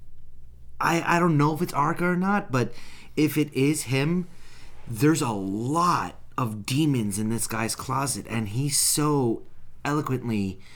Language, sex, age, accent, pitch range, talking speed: English, male, 30-49, American, 95-145 Hz, 150 wpm